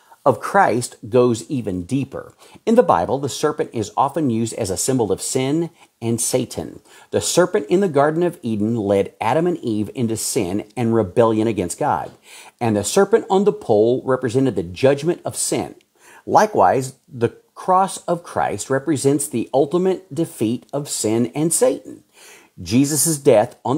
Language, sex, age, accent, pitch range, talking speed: English, male, 50-69, American, 110-165 Hz, 160 wpm